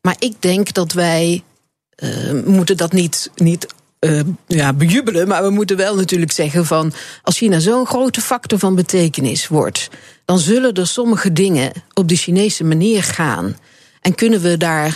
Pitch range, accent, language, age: 160-205 Hz, Dutch, Dutch, 50-69